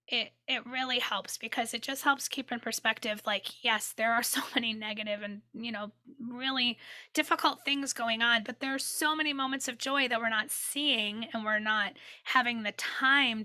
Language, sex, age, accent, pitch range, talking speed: English, female, 20-39, American, 205-245 Hz, 195 wpm